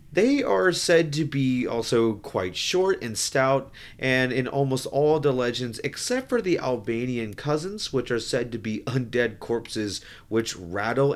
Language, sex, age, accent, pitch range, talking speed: English, male, 30-49, American, 105-145 Hz, 160 wpm